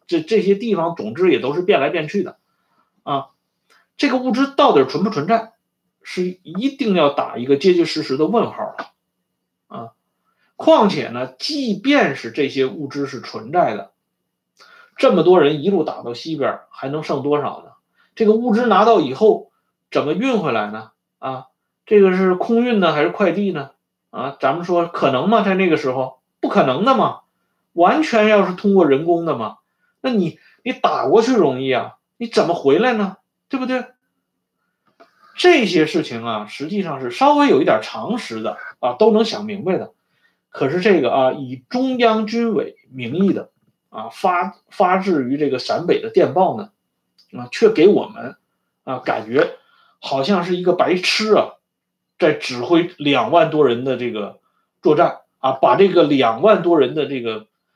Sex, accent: male, Chinese